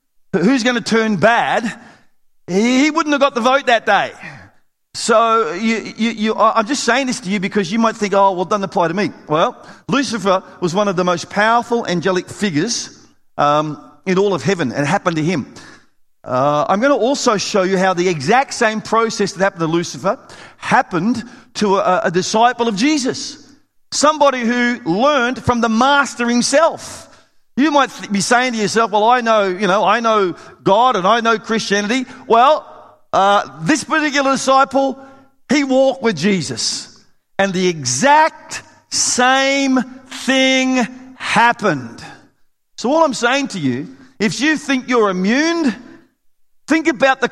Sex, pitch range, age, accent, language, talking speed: male, 200-265 Hz, 40-59, Australian, English, 165 wpm